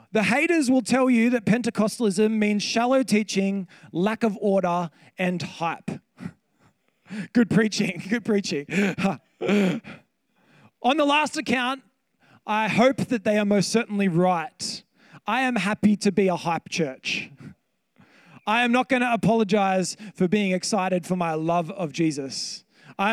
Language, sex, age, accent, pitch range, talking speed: English, male, 20-39, Australian, 170-220 Hz, 140 wpm